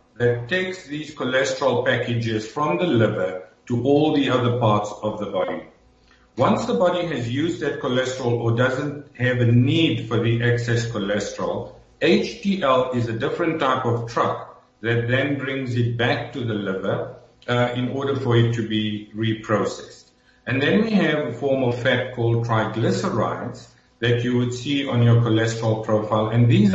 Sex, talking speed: male, 170 wpm